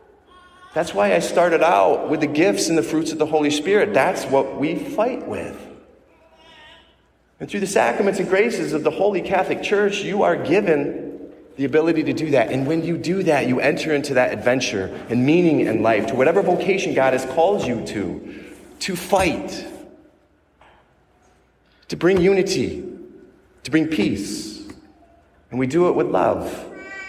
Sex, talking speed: male, 165 wpm